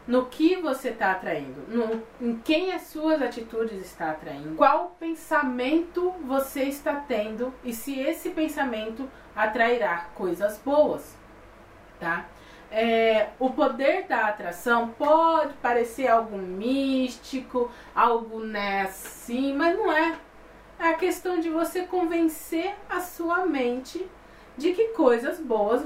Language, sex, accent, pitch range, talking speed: Portuguese, female, Brazilian, 220-325 Hz, 125 wpm